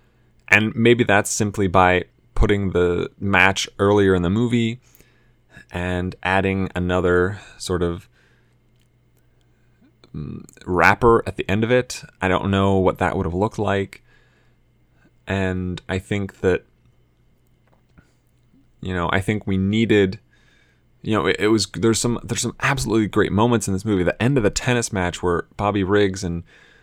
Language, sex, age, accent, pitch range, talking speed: English, male, 20-39, American, 90-110 Hz, 150 wpm